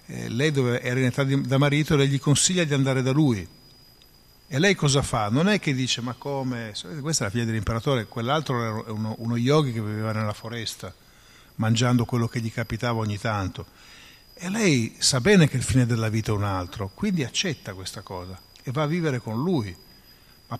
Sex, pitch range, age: male, 110-140 Hz, 50-69